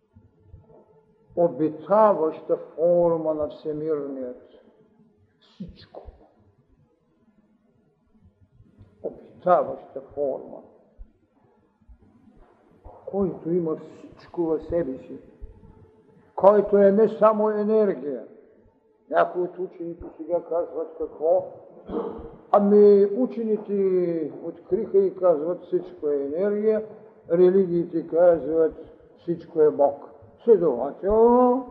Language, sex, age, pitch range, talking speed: Bulgarian, male, 60-79, 155-205 Hz, 70 wpm